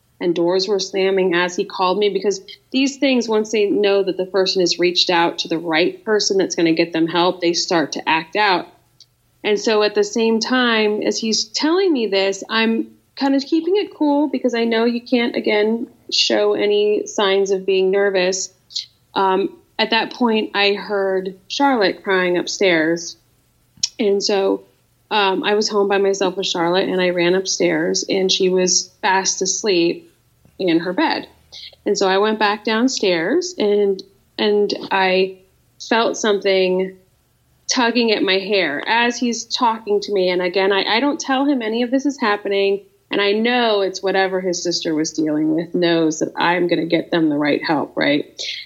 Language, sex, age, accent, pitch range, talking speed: English, female, 30-49, American, 180-225 Hz, 185 wpm